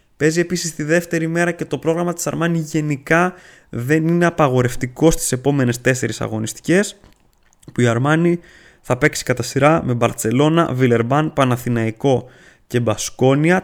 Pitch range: 125-160 Hz